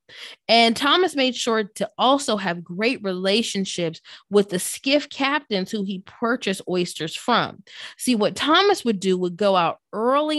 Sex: female